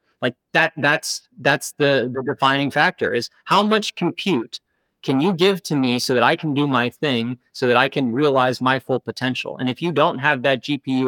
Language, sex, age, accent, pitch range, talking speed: English, male, 30-49, American, 120-145 Hz, 210 wpm